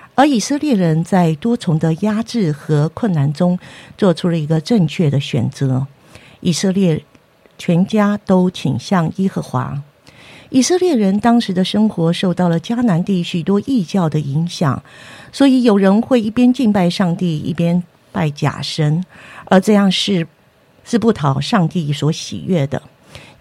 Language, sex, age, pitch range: Chinese, female, 50-69, 150-215 Hz